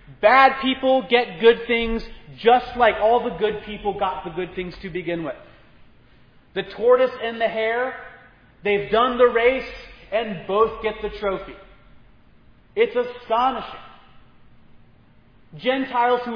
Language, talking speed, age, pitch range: English, 130 wpm, 30-49, 150-240 Hz